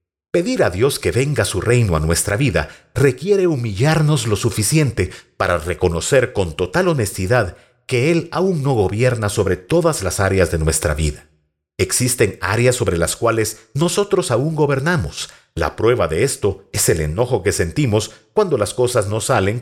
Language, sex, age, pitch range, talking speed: Spanish, male, 50-69, 100-150 Hz, 160 wpm